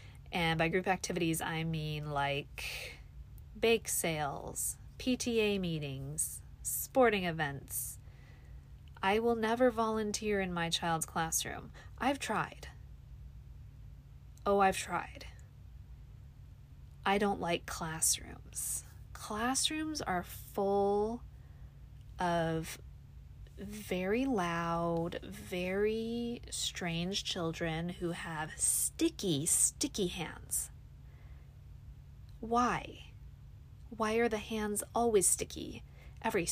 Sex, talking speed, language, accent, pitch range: female, 85 wpm, English, American, 165-215 Hz